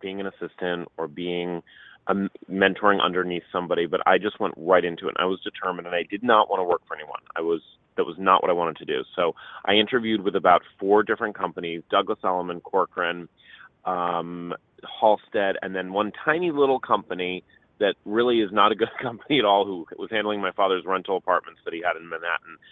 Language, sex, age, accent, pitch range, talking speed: English, male, 30-49, American, 90-115 Hz, 210 wpm